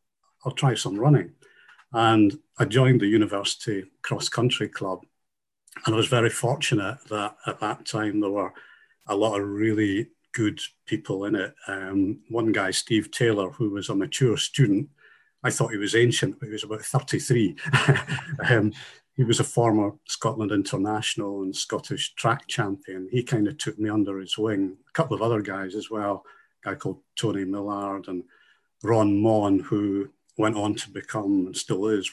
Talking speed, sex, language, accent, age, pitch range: 175 wpm, male, English, British, 50-69, 100-125 Hz